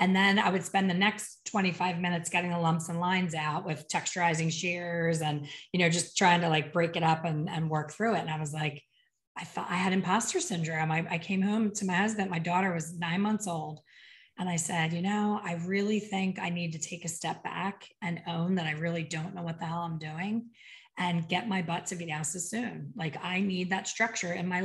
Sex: female